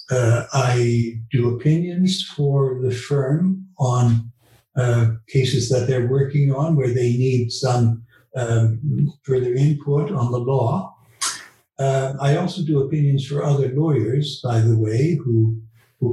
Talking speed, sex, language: 140 wpm, male, English